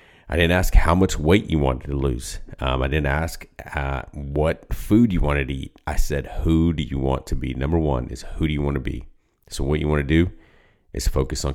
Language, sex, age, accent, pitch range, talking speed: English, male, 30-49, American, 70-80 Hz, 245 wpm